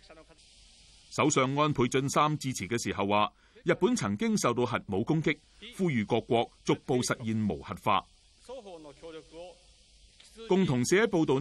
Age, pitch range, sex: 30-49, 105-160 Hz, male